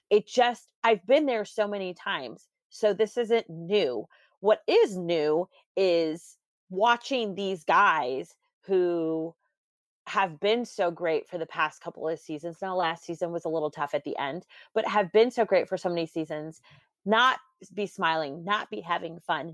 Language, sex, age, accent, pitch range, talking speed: English, female, 30-49, American, 165-205 Hz, 170 wpm